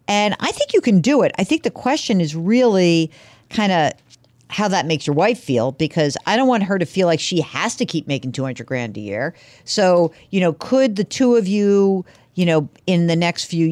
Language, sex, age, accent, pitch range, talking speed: English, female, 50-69, American, 145-195 Hz, 230 wpm